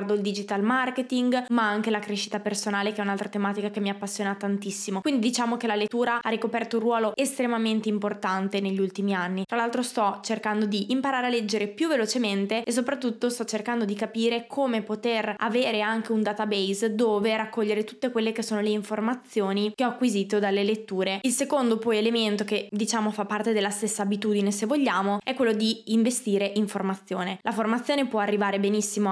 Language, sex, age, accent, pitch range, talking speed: Italian, female, 20-39, native, 205-230 Hz, 185 wpm